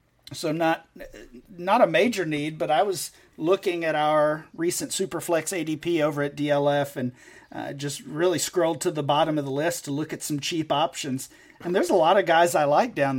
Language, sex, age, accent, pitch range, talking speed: English, male, 40-59, American, 145-175 Hz, 200 wpm